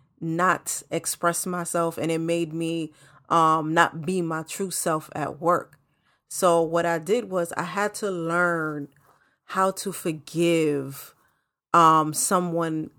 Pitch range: 155-200 Hz